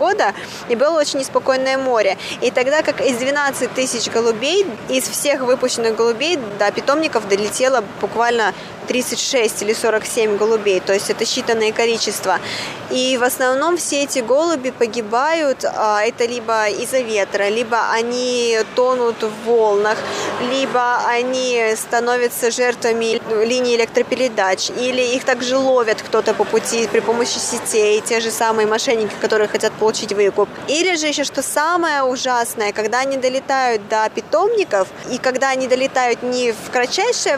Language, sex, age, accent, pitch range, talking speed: Russian, female, 20-39, native, 220-265 Hz, 140 wpm